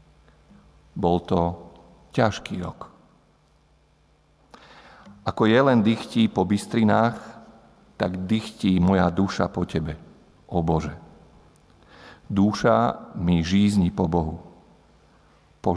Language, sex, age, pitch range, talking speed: Slovak, male, 50-69, 80-105 Hz, 90 wpm